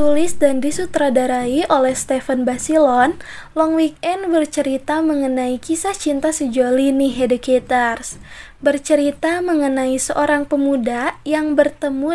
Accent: native